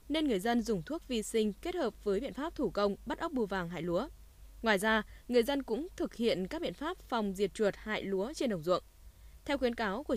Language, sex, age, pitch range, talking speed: Vietnamese, female, 10-29, 200-255 Hz, 250 wpm